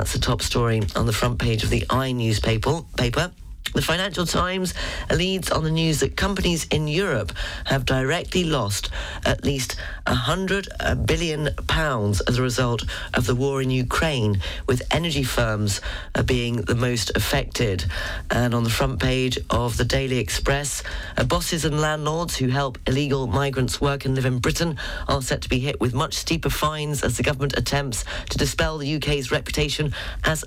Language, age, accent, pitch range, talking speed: English, 40-59, British, 115-155 Hz, 170 wpm